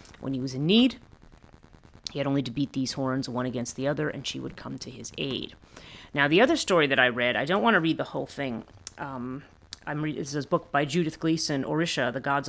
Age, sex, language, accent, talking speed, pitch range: 30-49, female, English, American, 245 wpm, 125-155 Hz